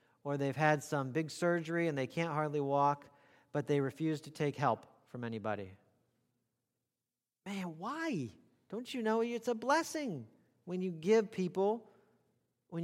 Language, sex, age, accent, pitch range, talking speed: English, male, 40-59, American, 140-205 Hz, 150 wpm